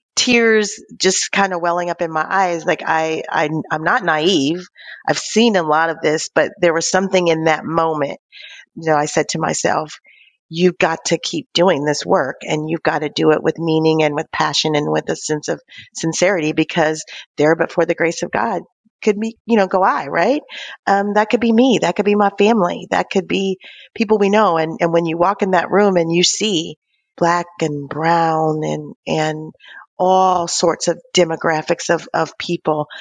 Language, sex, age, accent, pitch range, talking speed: English, female, 40-59, American, 160-195 Hz, 205 wpm